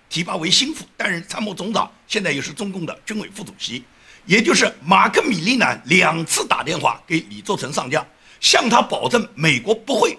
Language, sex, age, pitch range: Chinese, male, 60-79, 190-315 Hz